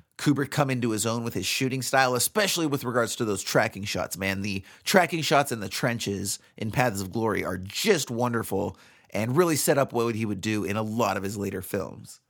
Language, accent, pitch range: English, American, 115-170 Hz